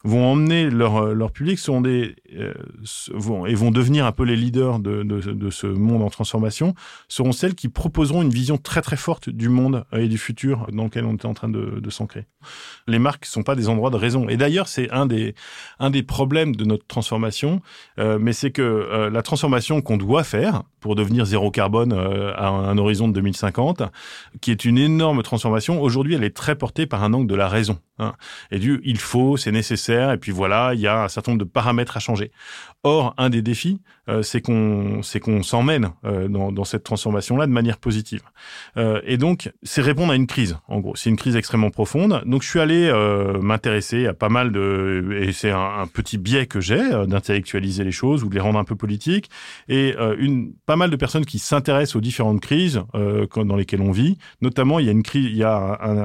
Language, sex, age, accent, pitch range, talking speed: French, male, 30-49, French, 105-135 Hz, 220 wpm